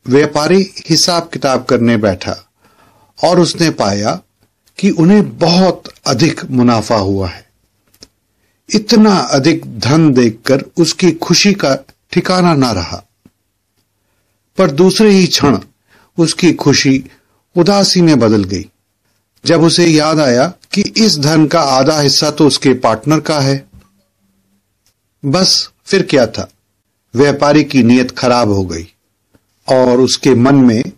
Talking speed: 125 wpm